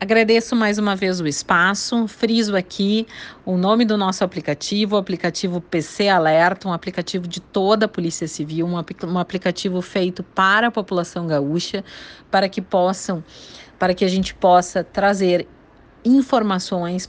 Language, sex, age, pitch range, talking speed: Portuguese, female, 40-59, 175-205 Hz, 140 wpm